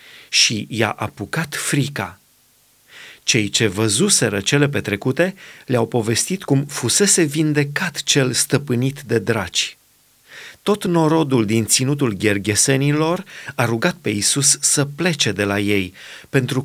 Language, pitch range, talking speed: Romanian, 115-150 Hz, 120 wpm